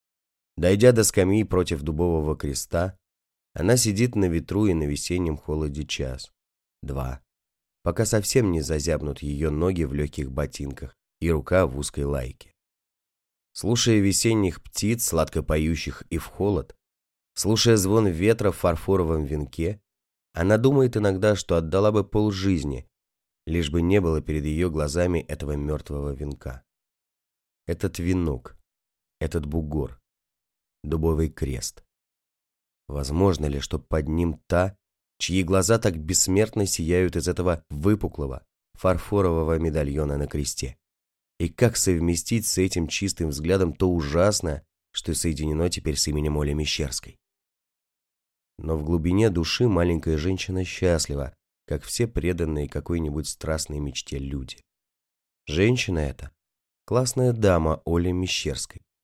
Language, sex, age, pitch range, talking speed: Russian, male, 30-49, 75-95 Hz, 125 wpm